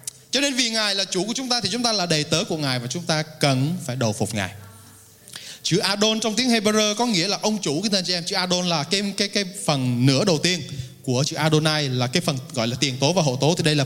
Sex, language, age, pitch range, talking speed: male, Vietnamese, 20-39, 140-210 Hz, 275 wpm